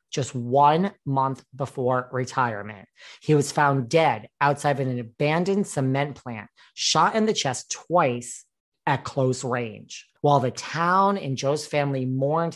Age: 40-59